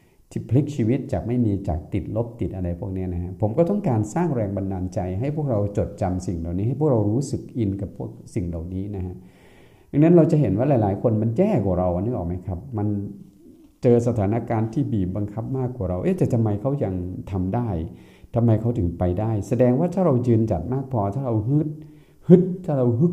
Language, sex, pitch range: Thai, male, 90-120 Hz